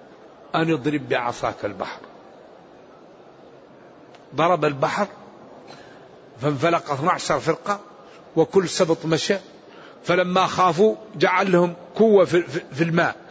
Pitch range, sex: 175-220 Hz, male